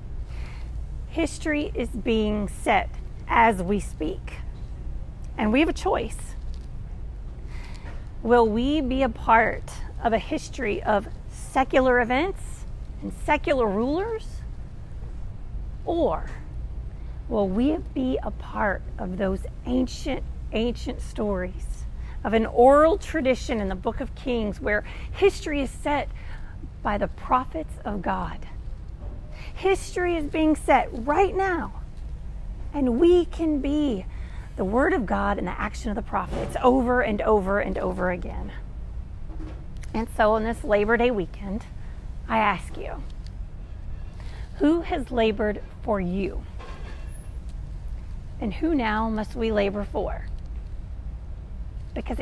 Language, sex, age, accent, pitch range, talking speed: English, female, 40-59, American, 180-285 Hz, 120 wpm